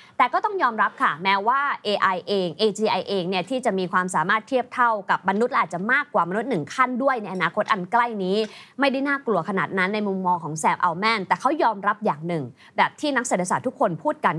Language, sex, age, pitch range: Thai, female, 20-39, 185-255 Hz